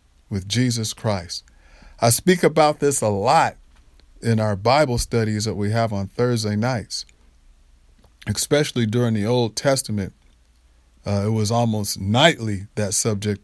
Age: 40-59